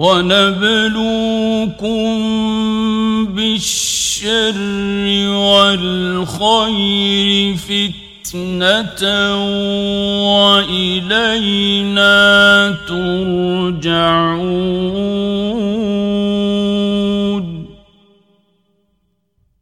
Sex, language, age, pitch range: male, Persian, 50-69, 190-225 Hz